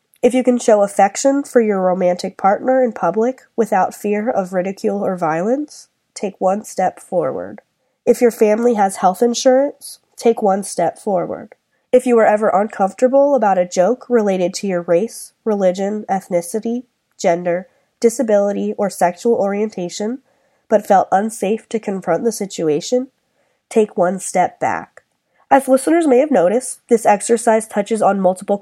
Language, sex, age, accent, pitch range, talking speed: English, female, 20-39, American, 195-250 Hz, 150 wpm